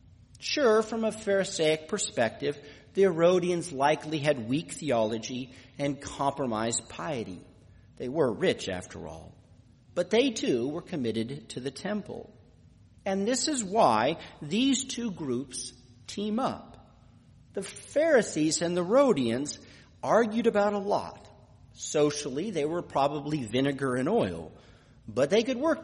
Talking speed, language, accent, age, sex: 130 wpm, English, American, 50-69, male